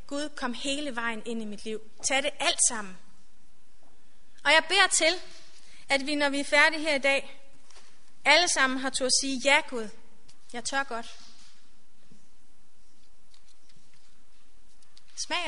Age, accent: 30-49, native